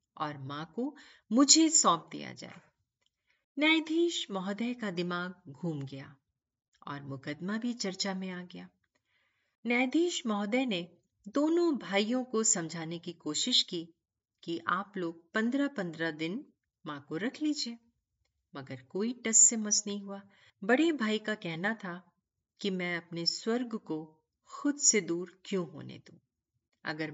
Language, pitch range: Hindi, 160-255 Hz